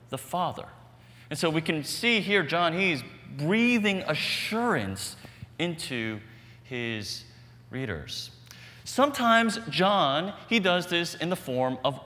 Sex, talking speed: male, 120 wpm